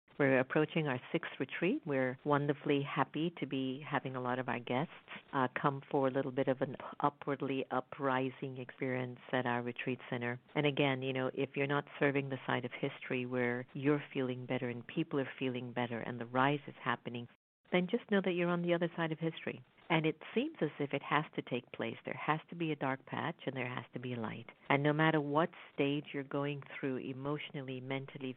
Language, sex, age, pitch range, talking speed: English, female, 50-69, 130-160 Hz, 215 wpm